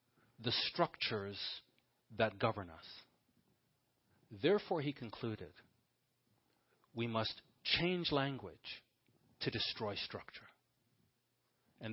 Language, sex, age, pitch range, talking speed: English, male, 40-59, 100-135 Hz, 80 wpm